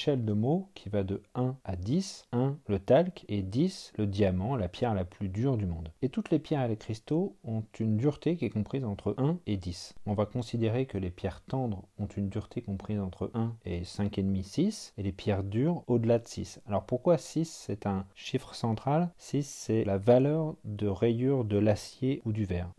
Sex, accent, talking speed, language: male, French, 210 wpm, French